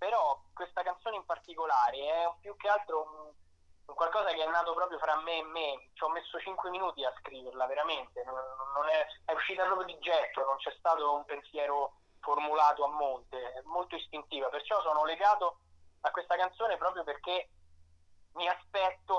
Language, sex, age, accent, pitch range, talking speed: Italian, male, 20-39, native, 135-170 Hz, 170 wpm